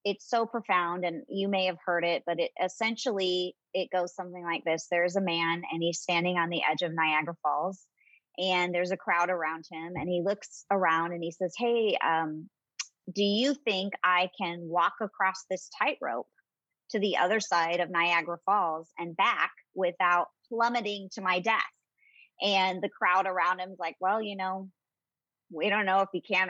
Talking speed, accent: 190 wpm, American